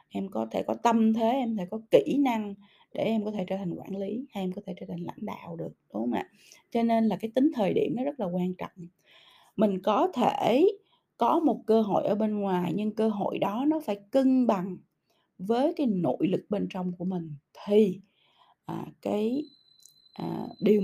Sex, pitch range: female, 190-245 Hz